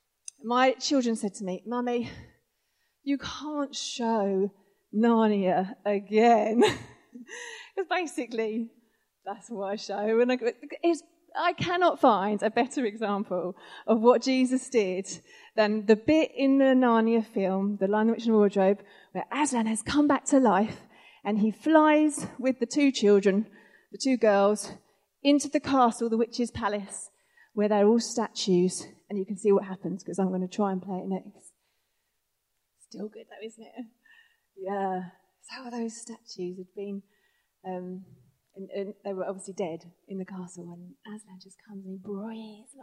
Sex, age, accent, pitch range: female, 30-49, British, 195-245 Hz